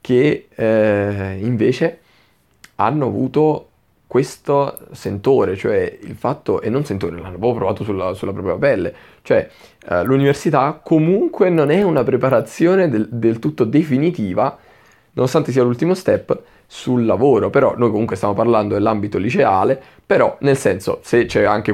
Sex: male